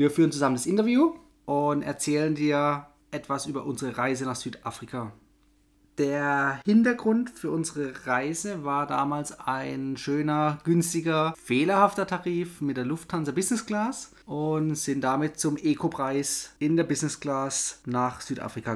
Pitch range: 125-165 Hz